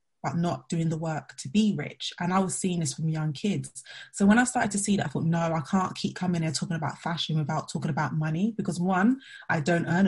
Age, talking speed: 20-39, 250 wpm